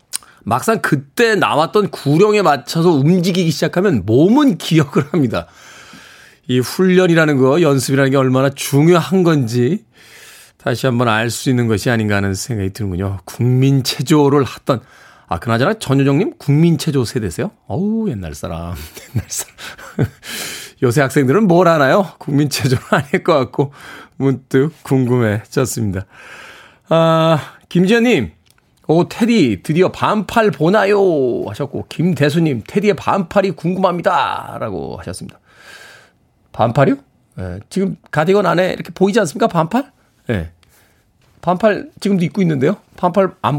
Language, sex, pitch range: Korean, male, 120-185 Hz